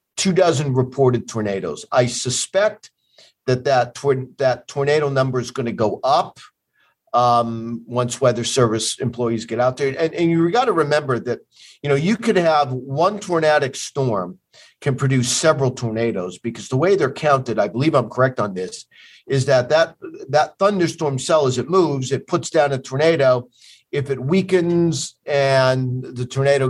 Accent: American